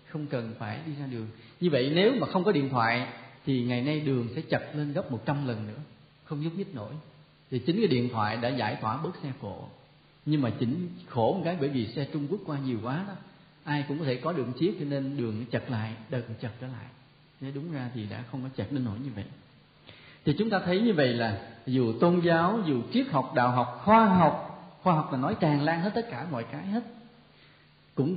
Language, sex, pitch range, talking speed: Vietnamese, male, 125-185 Hz, 245 wpm